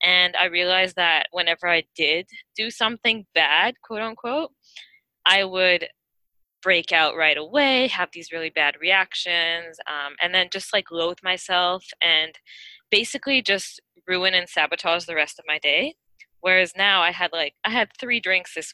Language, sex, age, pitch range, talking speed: English, female, 20-39, 170-230 Hz, 165 wpm